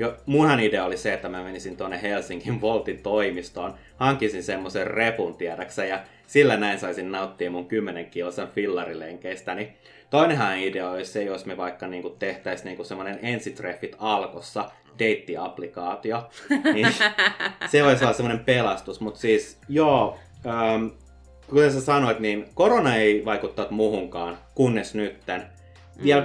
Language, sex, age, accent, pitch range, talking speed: Finnish, male, 30-49, native, 90-120 Hz, 140 wpm